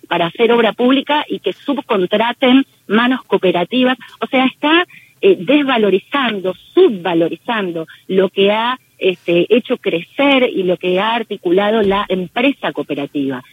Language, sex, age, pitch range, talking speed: Spanish, female, 40-59, 180-245 Hz, 125 wpm